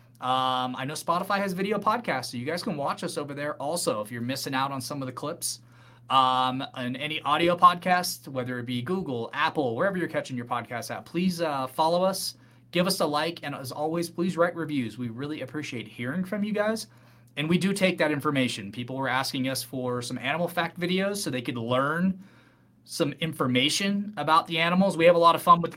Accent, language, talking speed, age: American, English, 215 wpm, 30-49